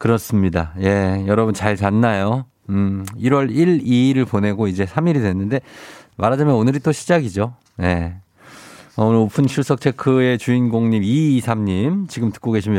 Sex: male